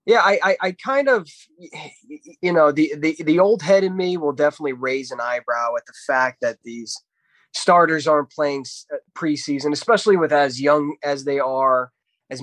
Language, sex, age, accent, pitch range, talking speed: English, male, 20-39, American, 140-185 Hz, 180 wpm